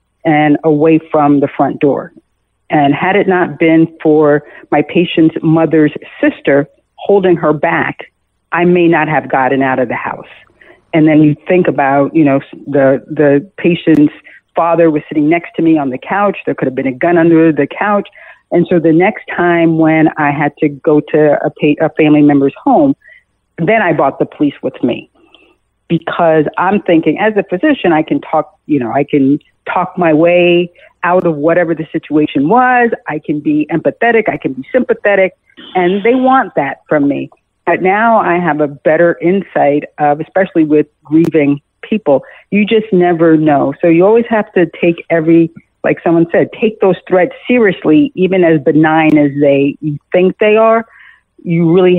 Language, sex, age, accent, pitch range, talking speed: English, female, 50-69, American, 150-180 Hz, 180 wpm